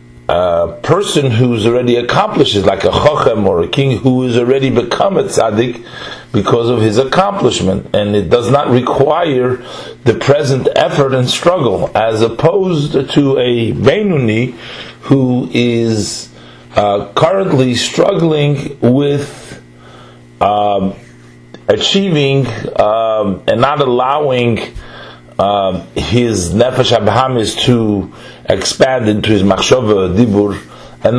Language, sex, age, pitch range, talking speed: English, male, 40-59, 105-135 Hz, 115 wpm